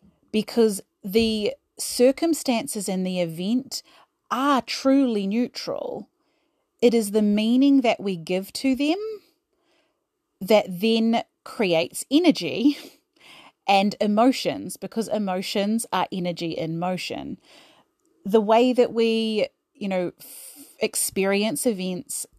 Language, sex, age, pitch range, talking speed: English, female, 30-49, 185-245 Hz, 105 wpm